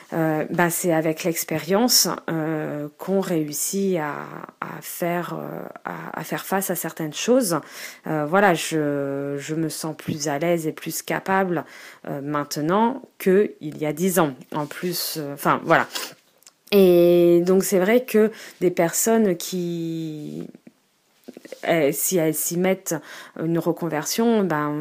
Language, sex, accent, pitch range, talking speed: French, female, French, 155-185 Hz, 140 wpm